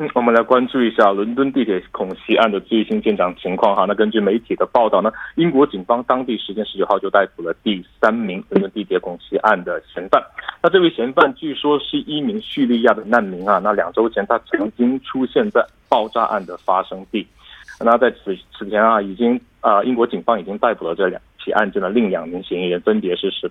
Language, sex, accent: Korean, male, Chinese